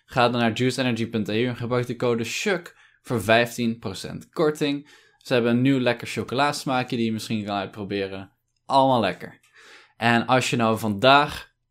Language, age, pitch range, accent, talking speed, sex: Dutch, 10-29, 115-160 Hz, Dutch, 155 wpm, male